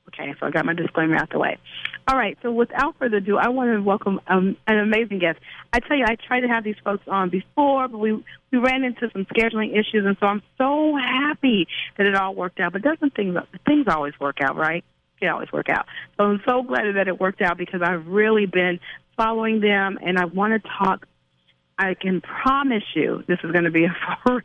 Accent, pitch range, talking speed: American, 175-240 Hz, 230 wpm